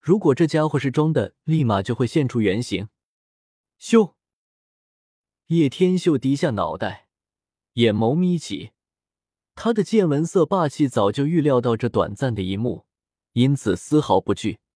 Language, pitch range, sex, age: Chinese, 105-160 Hz, male, 20-39